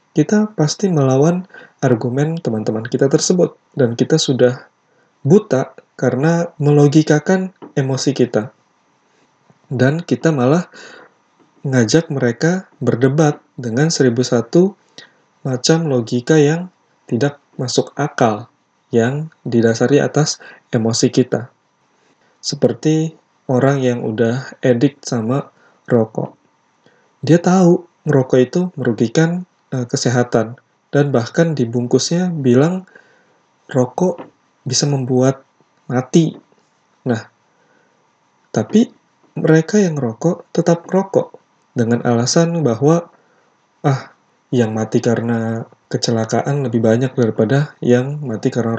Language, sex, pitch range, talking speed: Indonesian, male, 120-160 Hz, 95 wpm